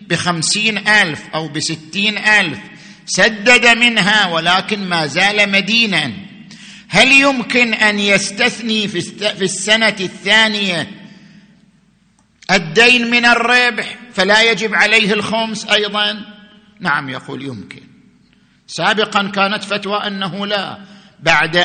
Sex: male